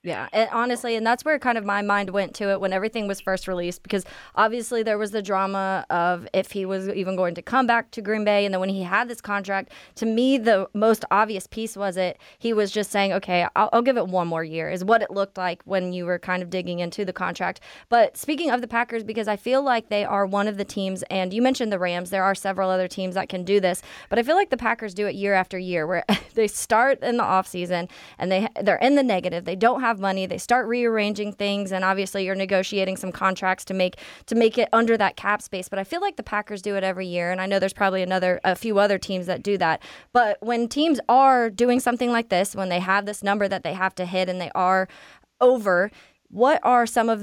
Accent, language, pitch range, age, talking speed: American, English, 185-225 Hz, 20-39, 255 wpm